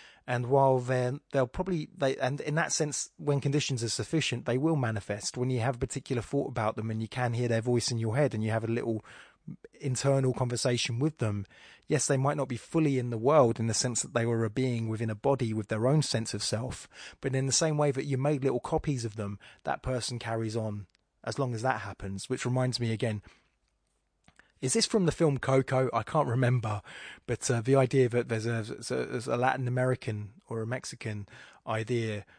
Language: English